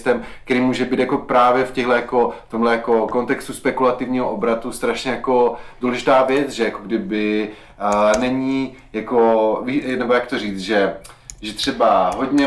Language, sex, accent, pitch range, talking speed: Czech, male, native, 115-130 Hz, 145 wpm